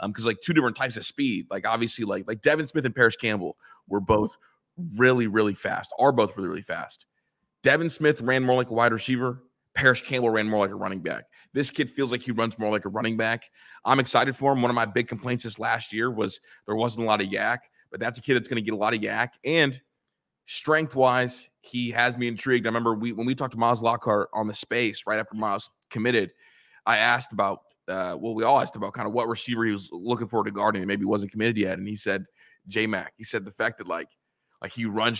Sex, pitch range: male, 110-130 Hz